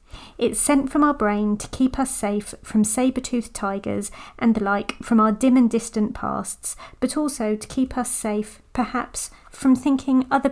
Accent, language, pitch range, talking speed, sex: British, English, 200-245 Hz, 175 wpm, female